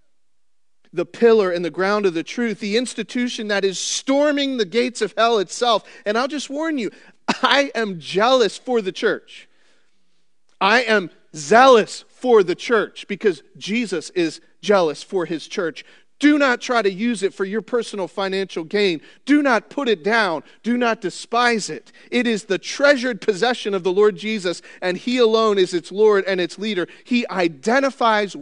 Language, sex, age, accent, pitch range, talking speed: English, male, 40-59, American, 165-235 Hz, 175 wpm